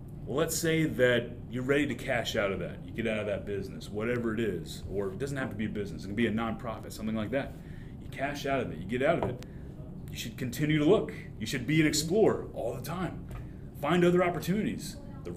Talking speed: 240 wpm